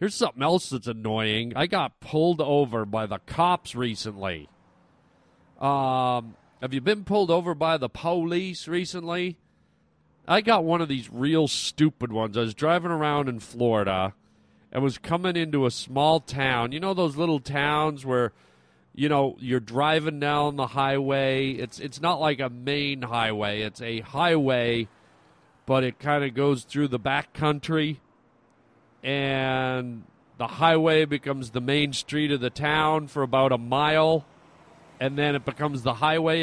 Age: 40-59